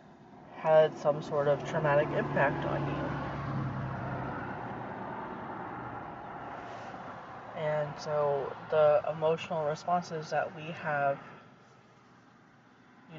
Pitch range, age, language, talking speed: 145-165 Hz, 20-39, English, 75 wpm